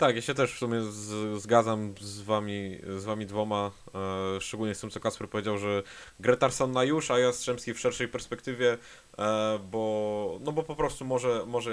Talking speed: 190 wpm